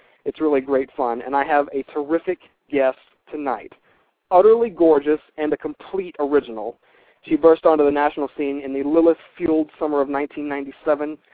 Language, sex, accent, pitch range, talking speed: English, male, American, 135-160 Hz, 155 wpm